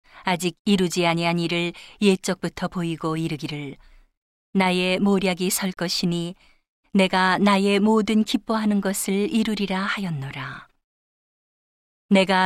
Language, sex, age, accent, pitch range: Korean, female, 40-59, native, 170-200 Hz